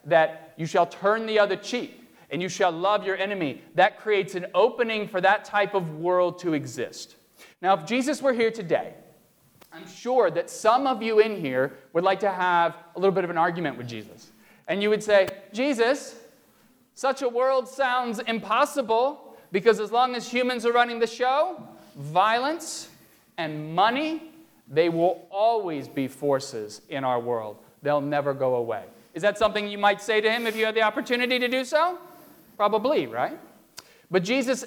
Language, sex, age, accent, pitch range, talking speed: English, male, 40-59, American, 170-245 Hz, 180 wpm